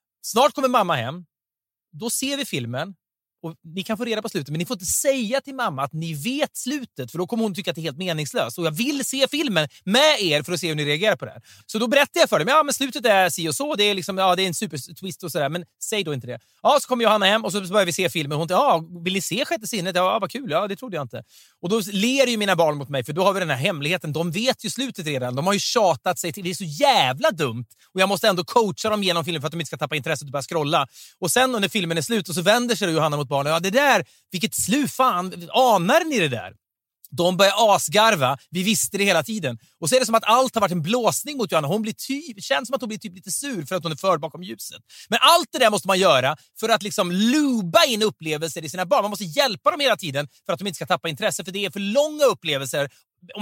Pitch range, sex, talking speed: 165-225 Hz, male, 290 wpm